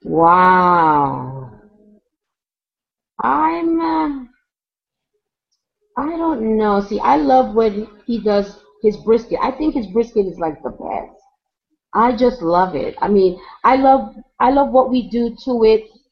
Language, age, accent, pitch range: English, 40-59, American, 200-255 Hz